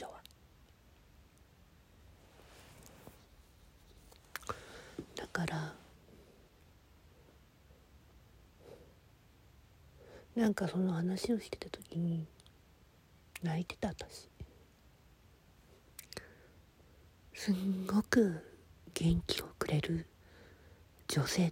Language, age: Japanese, 40-59